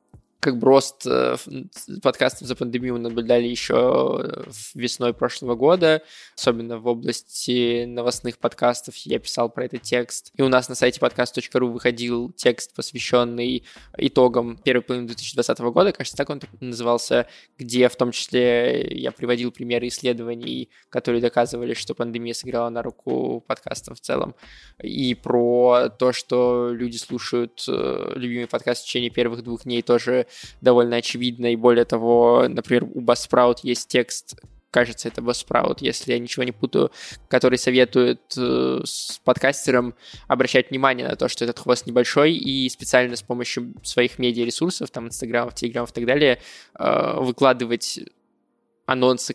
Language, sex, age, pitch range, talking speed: Russian, male, 20-39, 120-125 Hz, 140 wpm